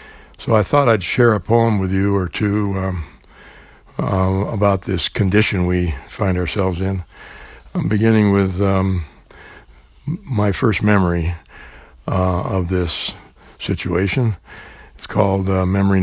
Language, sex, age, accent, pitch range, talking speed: English, male, 60-79, American, 90-110 Hz, 130 wpm